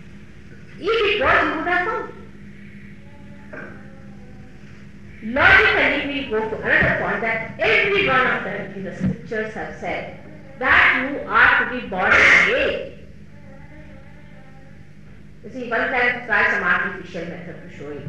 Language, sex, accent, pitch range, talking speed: English, female, Indian, 170-280 Hz, 140 wpm